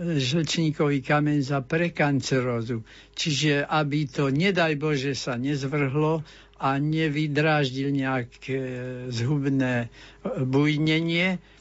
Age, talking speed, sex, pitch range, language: 60-79, 85 wpm, male, 135-170 Hz, Slovak